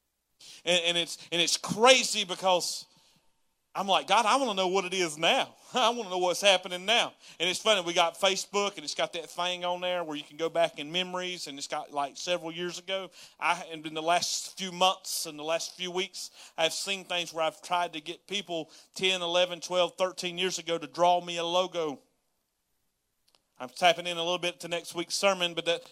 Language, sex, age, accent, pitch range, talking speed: English, male, 40-59, American, 150-180 Hz, 220 wpm